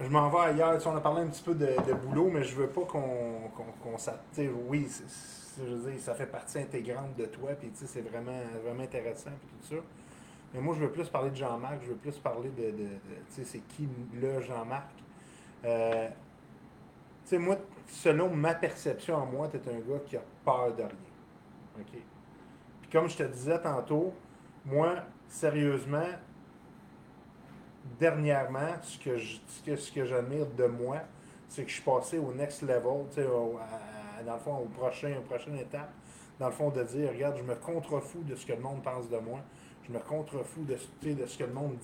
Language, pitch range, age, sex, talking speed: French, 120-150 Hz, 30-49, male, 200 wpm